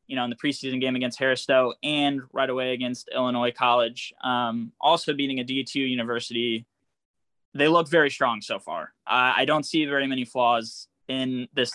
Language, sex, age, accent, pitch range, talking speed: English, male, 20-39, American, 125-140 Hz, 180 wpm